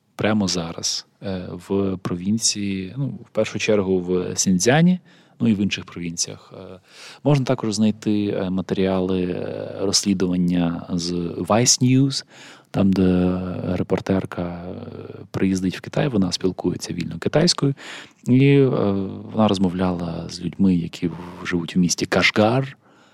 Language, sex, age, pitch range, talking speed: Ukrainian, male, 20-39, 90-105 Hz, 110 wpm